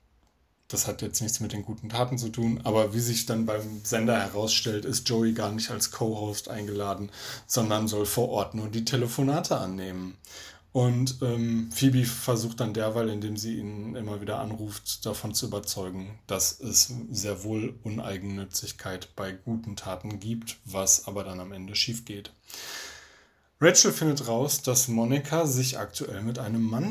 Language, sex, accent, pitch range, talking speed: German, male, German, 105-125 Hz, 165 wpm